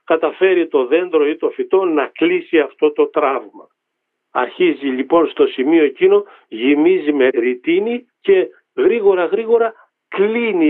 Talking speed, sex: 125 wpm, male